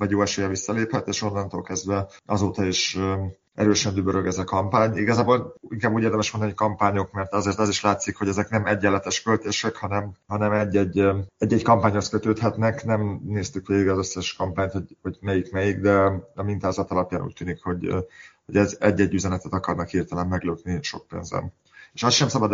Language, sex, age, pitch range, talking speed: Hungarian, male, 30-49, 95-105 Hz, 170 wpm